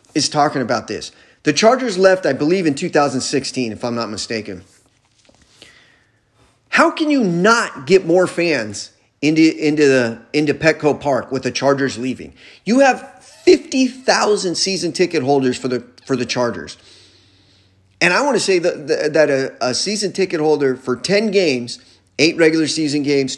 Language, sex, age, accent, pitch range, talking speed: English, male, 30-49, American, 110-165 Hz, 170 wpm